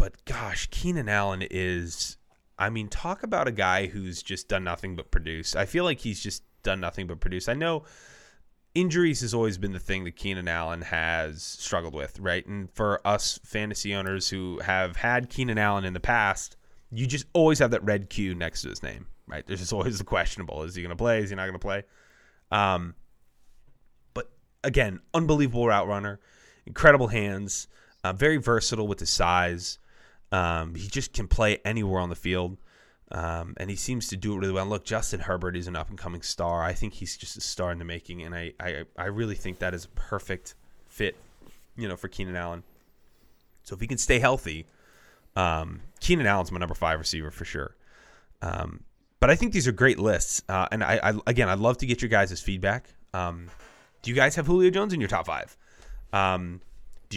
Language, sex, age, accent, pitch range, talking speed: English, male, 20-39, American, 90-115 Hz, 205 wpm